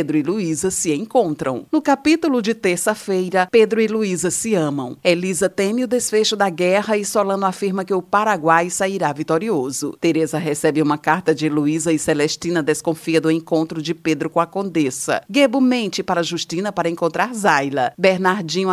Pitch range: 155-210 Hz